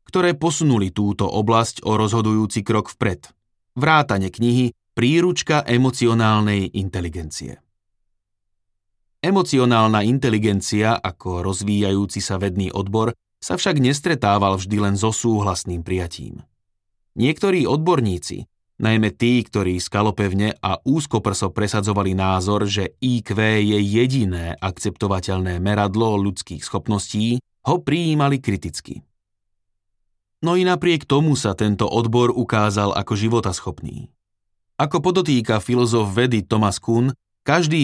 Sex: male